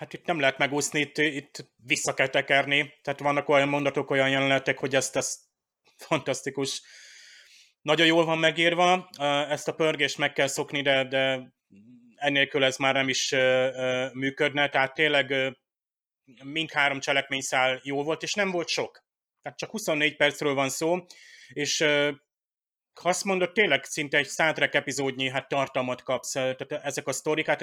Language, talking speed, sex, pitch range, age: Hungarian, 150 wpm, male, 135-155 Hz, 30-49